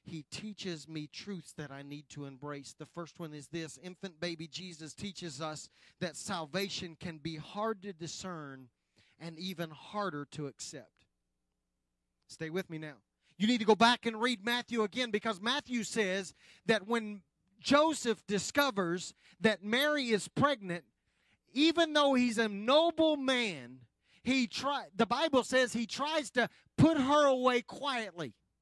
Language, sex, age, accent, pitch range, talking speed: English, male, 40-59, American, 155-255 Hz, 155 wpm